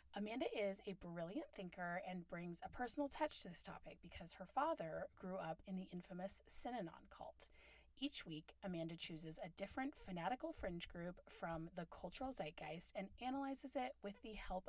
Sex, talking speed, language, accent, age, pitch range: female, 170 wpm, English, American, 30-49, 170-225 Hz